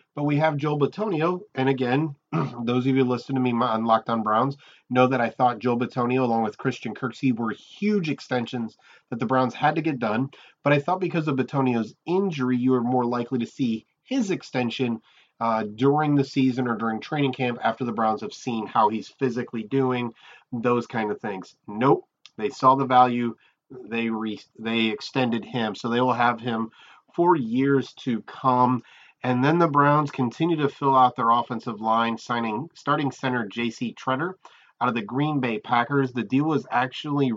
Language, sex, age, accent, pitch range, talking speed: English, male, 30-49, American, 120-145 Hz, 190 wpm